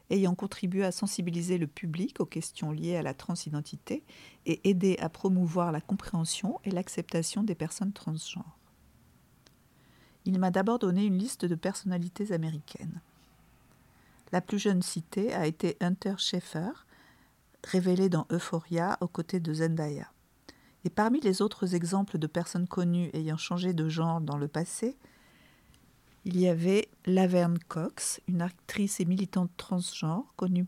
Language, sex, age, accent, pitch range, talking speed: French, female, 50-69, French, 170-195 Hz, 145 wpm